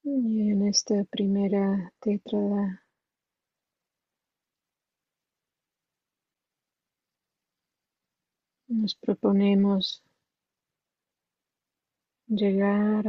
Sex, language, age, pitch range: female, English, 30-49, 200-225 Hz